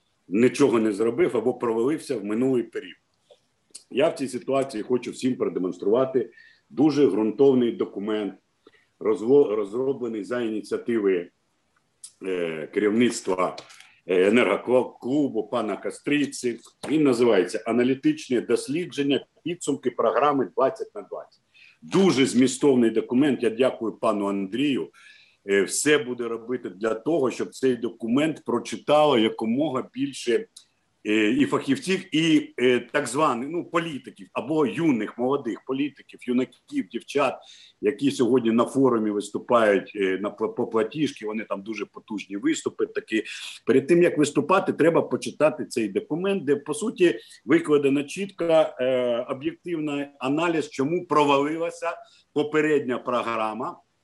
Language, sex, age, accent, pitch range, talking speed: Ukrainian, male, 50-69, native, 120-160 Hz, 110 wpm